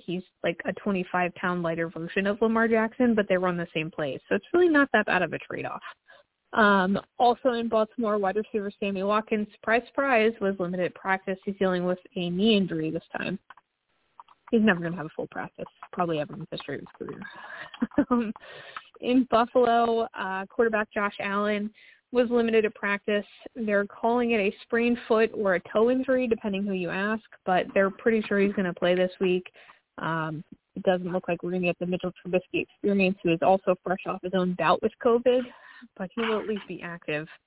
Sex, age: female, 20-39